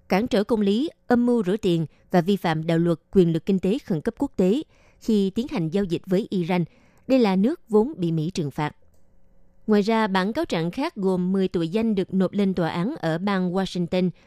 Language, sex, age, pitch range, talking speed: Vietnamese, female, 20-39, 170-215 Hz, 225 wpm